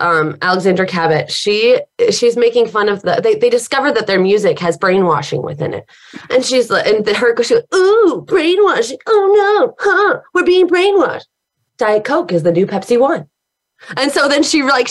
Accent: American